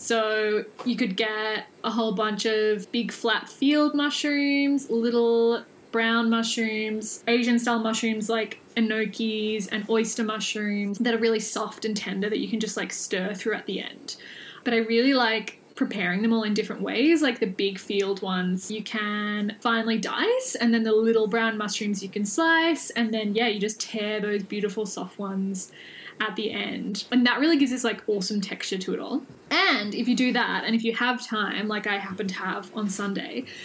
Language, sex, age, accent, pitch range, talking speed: English, female, 10-29, Australian, 210-235 Hz, 190 wpm